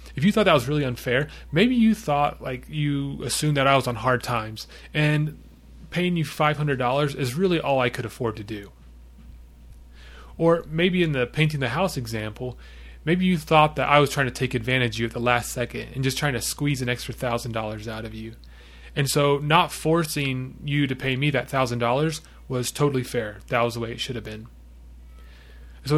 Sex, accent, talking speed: male, American, 205 wpm